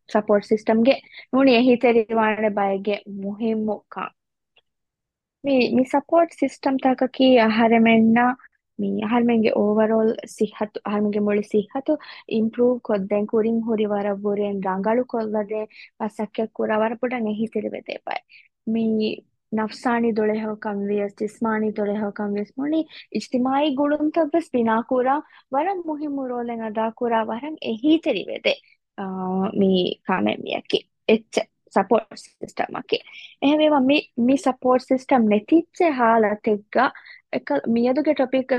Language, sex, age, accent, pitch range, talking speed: English, female, 20-39, Indian, 210-260 Hz, 105 wpm